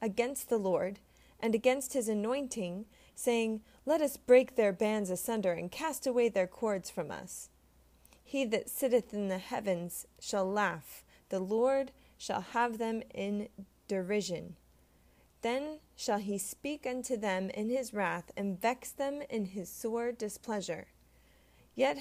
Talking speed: 145 wpm